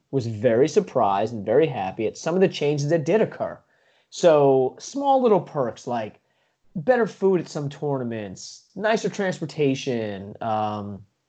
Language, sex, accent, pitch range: English, male, American, 125-170 Hz